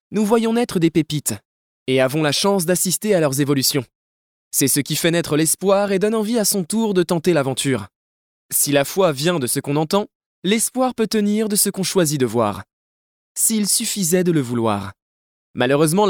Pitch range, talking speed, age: 135-195 Hz, 190 wpm, 20-39